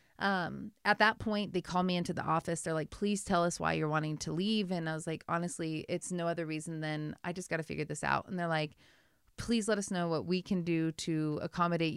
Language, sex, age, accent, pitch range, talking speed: English, female, 30-49, American, 165-190 Hz, 250 wpm